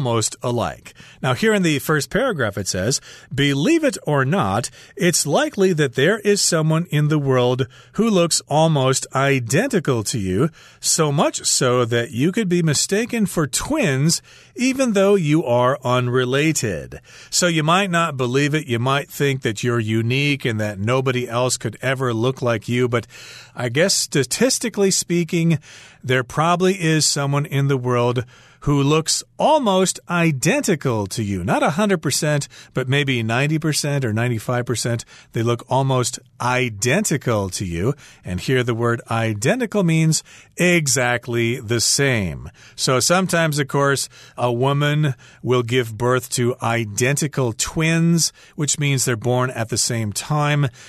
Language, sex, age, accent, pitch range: Chinese, male, 40-59, American, 120-155 Hz